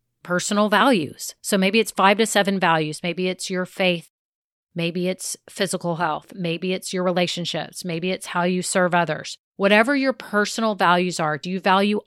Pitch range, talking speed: 180-225 Hz, 175 wpm